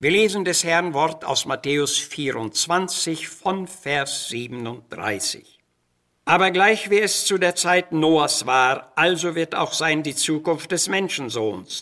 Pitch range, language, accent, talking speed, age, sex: 135-180 Hz, German, German, 140 wpm, 60-79, male